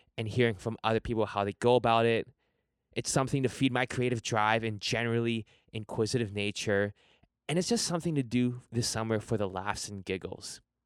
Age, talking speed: 20-39, 190 wpm